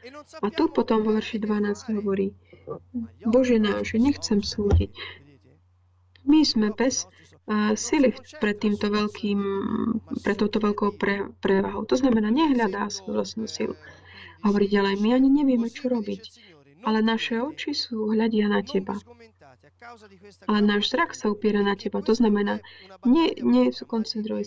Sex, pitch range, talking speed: female, 200-230 Hz, 135 wpm